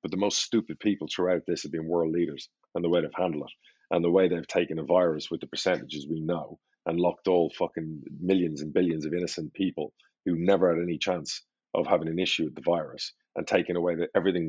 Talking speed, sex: 230 wpm, male